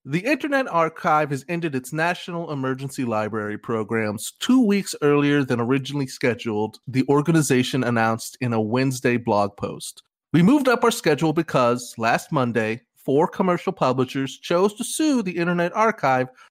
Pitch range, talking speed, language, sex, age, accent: 125-175 Hz, 150 wpm, English, male, 30-49, American